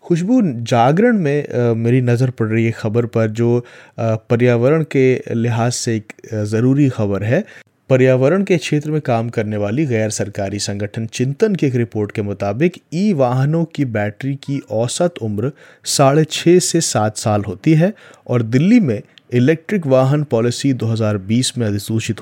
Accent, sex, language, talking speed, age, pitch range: native, male, Hindi, 155 wpm, 30-49, 115-155 Hz